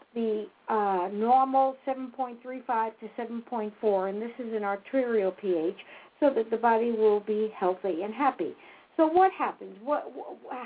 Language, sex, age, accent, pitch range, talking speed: English, female, 60-79, American, 225-285 Hz, 145 wpm